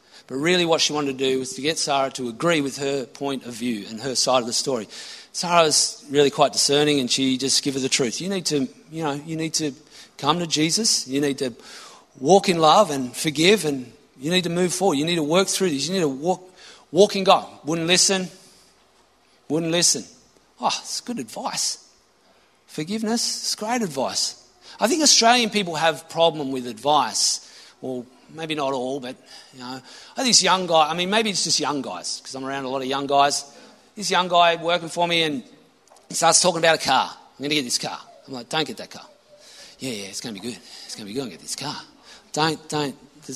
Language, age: English, 40-59